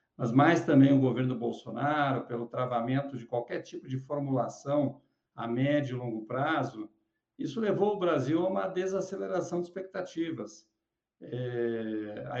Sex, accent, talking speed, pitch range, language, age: male, Brazilian, 135 wpm, 130-165 Hz, Portuguese, 60-79